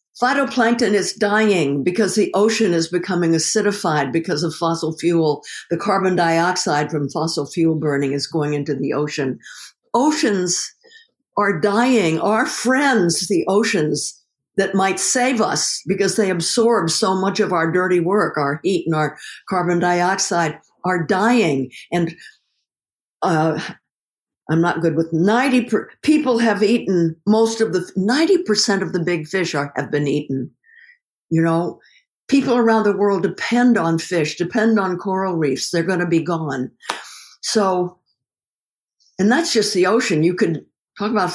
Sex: female